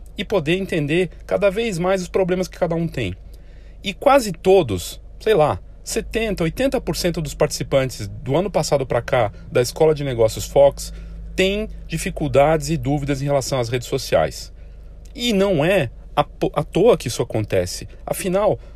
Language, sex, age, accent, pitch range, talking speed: Portuguese, male, 40-59, Brazilian, 130-185 Hz, 155 wpm